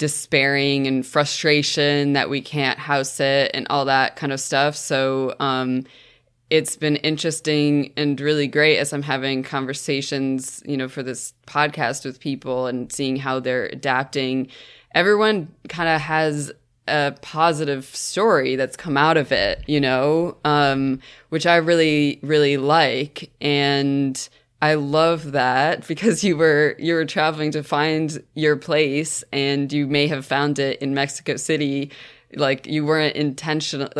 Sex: female